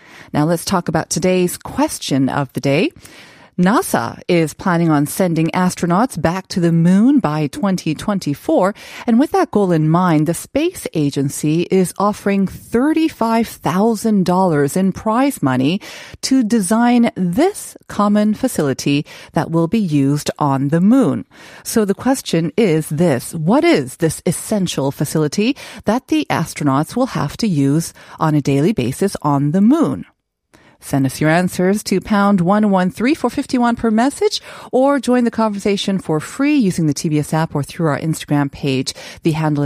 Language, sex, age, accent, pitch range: Korean, female, 30-49, American, 150-220 Hz